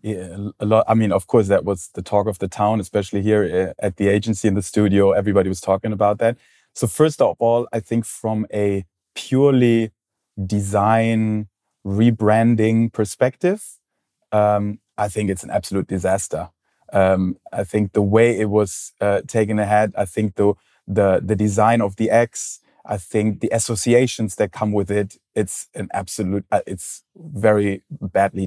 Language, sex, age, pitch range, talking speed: English, male, 30-49, 100-115 Hz, 170 wpm